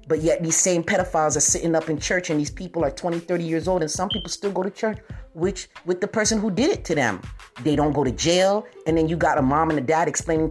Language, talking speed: English, 280 wpm